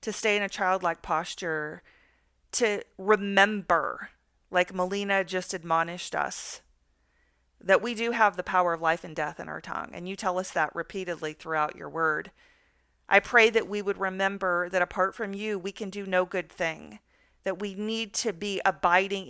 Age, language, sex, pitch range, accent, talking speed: 40-59, English, female, 175-210 Hz, American, 175 wpm